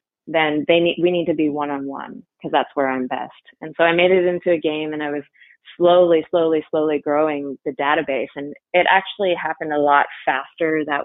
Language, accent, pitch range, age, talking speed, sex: English, American, 150-180 Hz, 20-39, 205 wpm, female